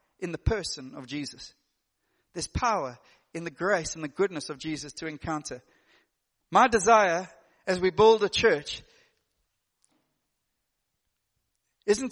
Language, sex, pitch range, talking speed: English, male, 170-245 Hz, 125 wpm